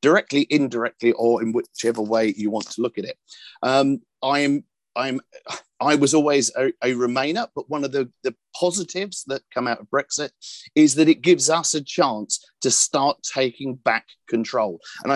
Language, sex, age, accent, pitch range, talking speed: English, male, 50-69, British, 115-150 Hz, 180 wpm